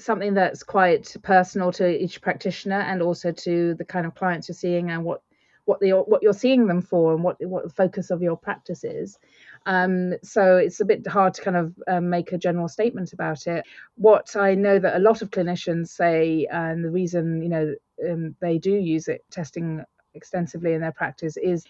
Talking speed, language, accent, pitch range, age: 205 wpm, English, British, 165-195 Hz, 30-49